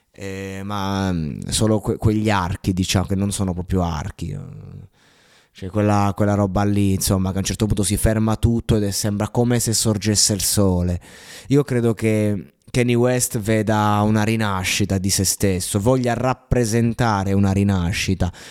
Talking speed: 160 wpm